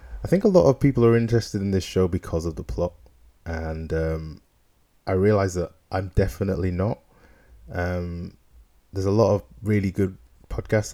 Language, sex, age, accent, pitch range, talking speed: English, male, 20-39, British, 85-100 Hz, 170 wpm